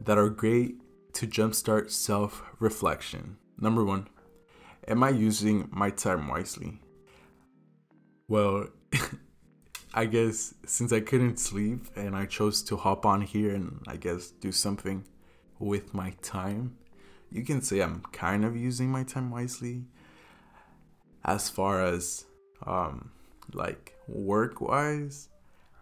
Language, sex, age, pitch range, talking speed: English, male, 20-39, 95-115 Hz, 125 wpm